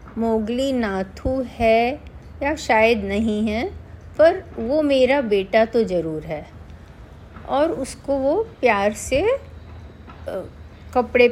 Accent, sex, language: native, female, Hindi